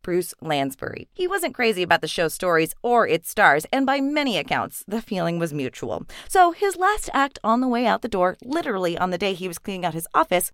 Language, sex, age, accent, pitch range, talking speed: English, female, 30-49, American, 170-255 Hz, 230 wpm